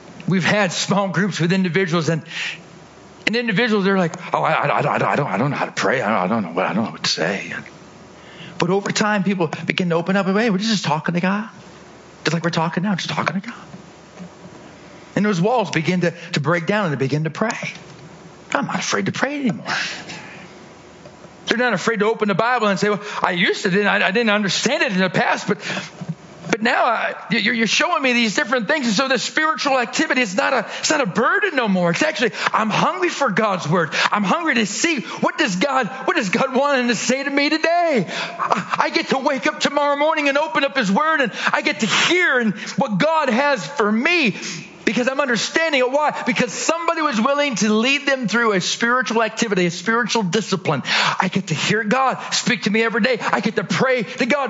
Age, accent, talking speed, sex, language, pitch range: 40-59, American, 230 wpm, male, English, 180-255 Hz